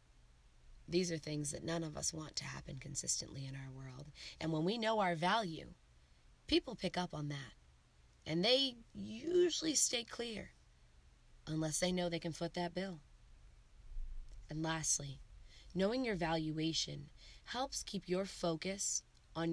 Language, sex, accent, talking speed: English, female, American, 150 wpm